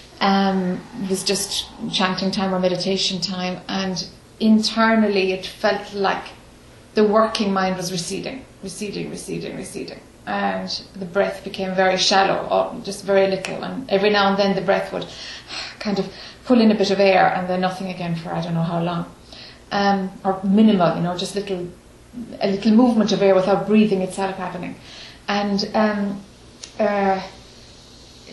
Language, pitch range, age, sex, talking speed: English, 195-225 Hz, 30-49, female, 160 wpm